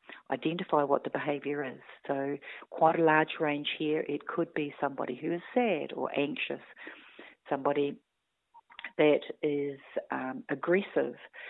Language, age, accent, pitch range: English, 40-59, Australian, 140-165 Hz